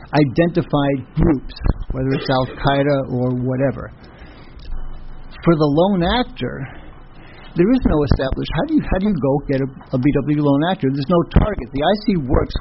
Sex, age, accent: male, 60-79, American